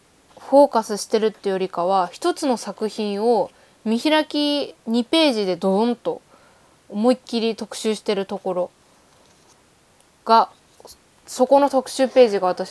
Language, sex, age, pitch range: Japanese, female, 20-39, 195-255 Hz